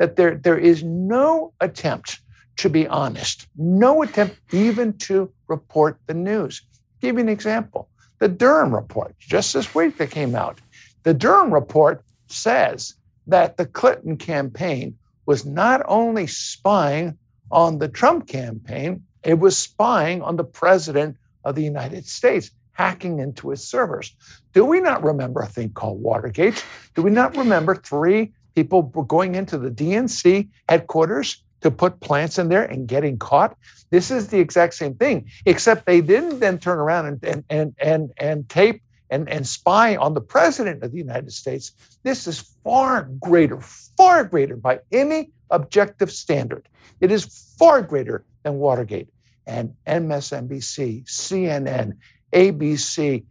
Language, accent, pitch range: English, American, 140-195 Hz